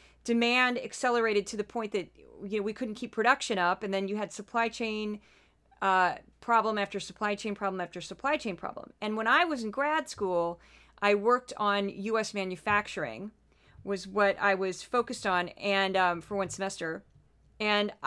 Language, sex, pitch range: English, female, 195-240 Hz